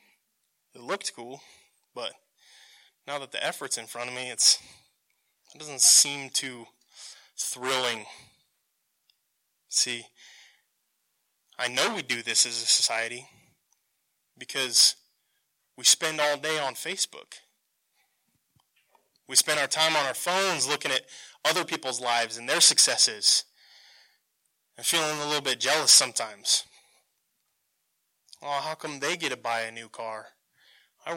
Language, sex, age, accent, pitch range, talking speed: English, male, 20-39, American, 120-155 Hz, 125 wpm